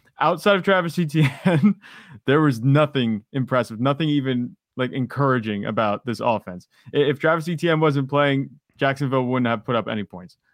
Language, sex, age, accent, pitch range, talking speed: English, male, 20-39, American, 120-145 Hz, 155 wpm